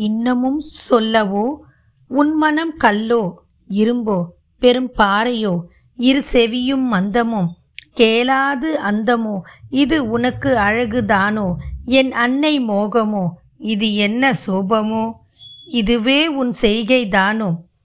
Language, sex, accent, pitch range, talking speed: Tamil, female, native, 205-265 Hz, 85 wpm